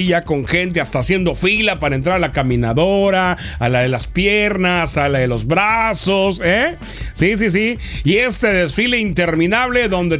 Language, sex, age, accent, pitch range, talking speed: Spanish, male, 40-59, Mexican, 155-220 Hz, 175 wpm